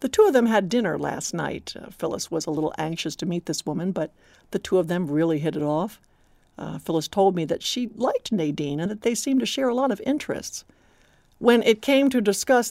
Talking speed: 235 wpm